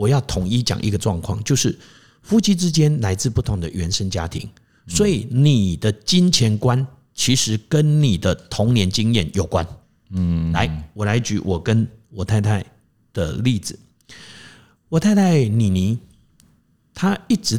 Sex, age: male, 50-69